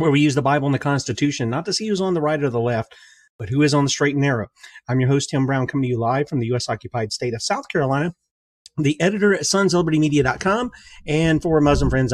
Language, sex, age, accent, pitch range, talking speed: English, male, 30-49, American, 125-170 Hz, 255 wpm